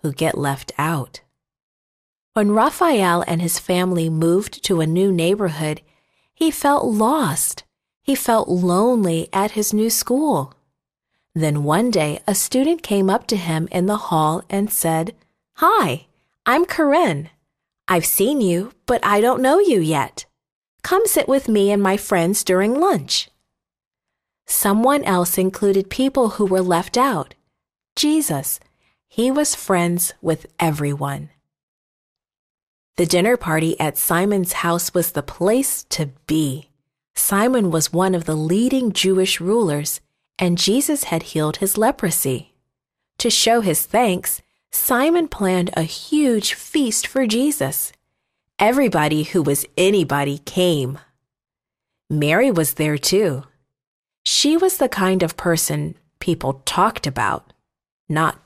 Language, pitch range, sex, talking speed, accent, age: English, 160-230 Hz, female, 130 wpm, American, 40-59